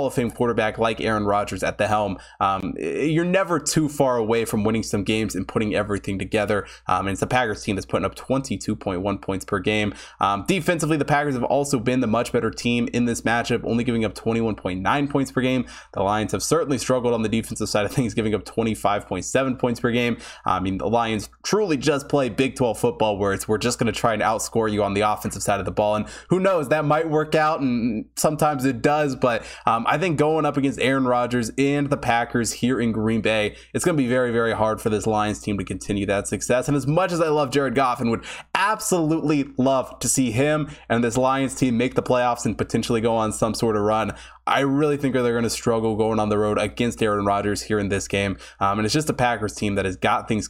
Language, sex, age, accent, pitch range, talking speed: English, male, 20-39, American, 105-135 Hz, 240 wpm